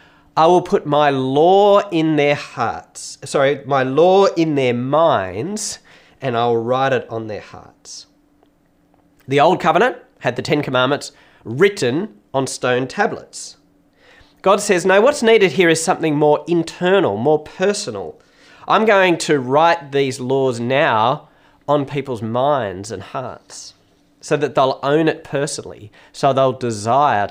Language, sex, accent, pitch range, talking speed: English, male, Australian, 125-165 Hz, 145 wpm